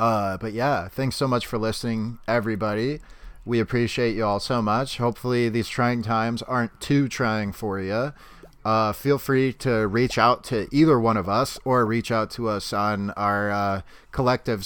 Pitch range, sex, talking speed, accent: 105-125 Hz, male, 180 wpm, American